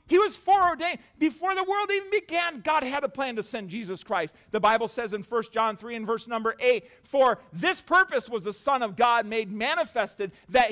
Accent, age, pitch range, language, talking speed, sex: American, 40-59, 220-310 Hz, English, 215 wpm, male